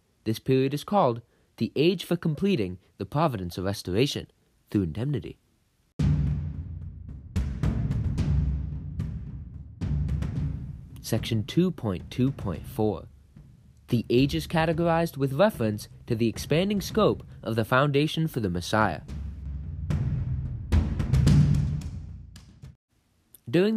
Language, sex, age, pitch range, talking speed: English, male, 20-39, 100-155 Hz, 85 wpm